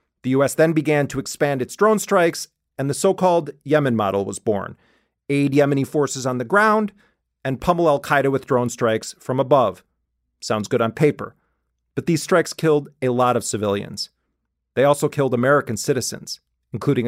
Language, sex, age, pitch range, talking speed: English, male, 40-59, 120-160 Hz, 170 wpm